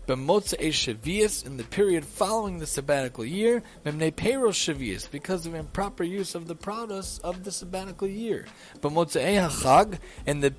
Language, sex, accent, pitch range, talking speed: English, male, American, 150-185 Hz, 115 wpm